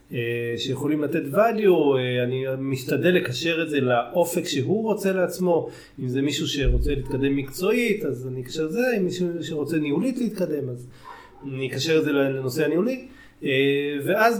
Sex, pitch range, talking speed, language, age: male, 135-180 Hz, 145 wpm, Hebrew, 30-49